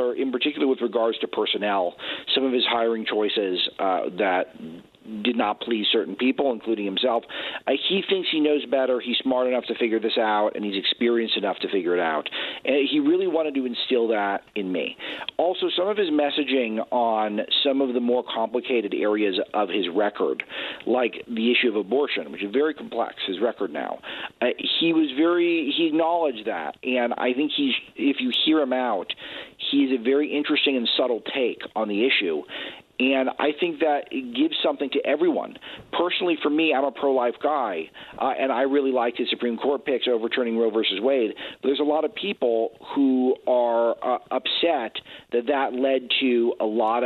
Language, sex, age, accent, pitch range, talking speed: English, male, 40-59, American, 115-150 Hz, 190 wpm